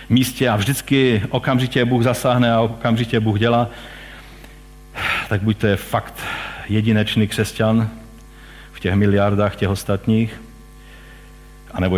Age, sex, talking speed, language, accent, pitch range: 50-69, male, 105 wpm, Czech, native, 100-130 Hz